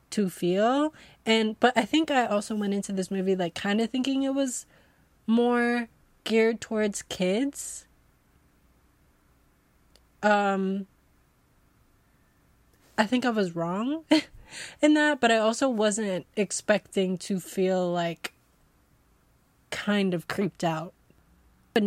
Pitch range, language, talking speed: 185-230 Hz, English, 120 wpm